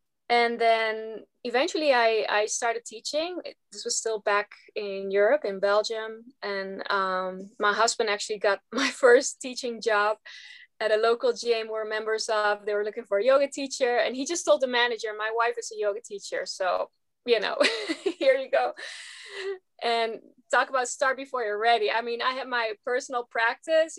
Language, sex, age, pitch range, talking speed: English, female, 20-39, 215-270 Hz, 180 wpm